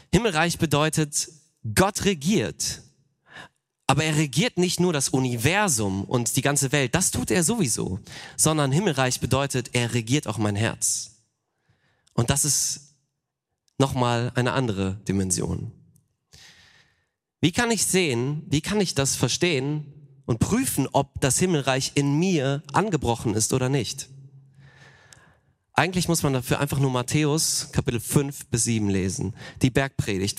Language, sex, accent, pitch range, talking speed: German, male, German, 120-150 Hz, 135 wpm